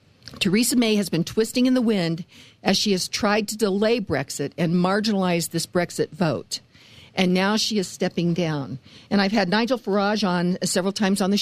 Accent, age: American, 50-69